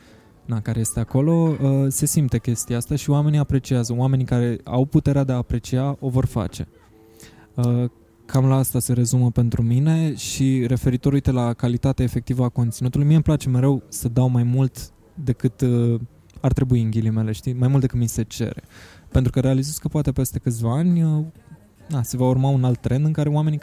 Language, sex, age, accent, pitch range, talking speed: Romanian, male, 20-39, native, 115-135 Hz, 190 wpm